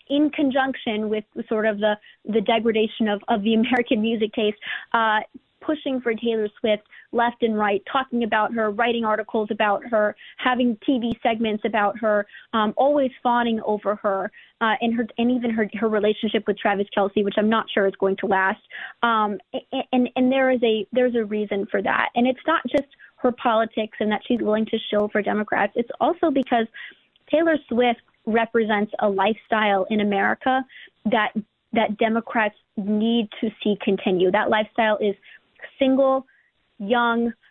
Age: 30-49